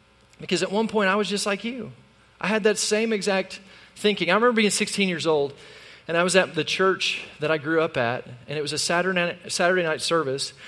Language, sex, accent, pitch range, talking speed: English, male, American, 160-205 Hz, 230 wpm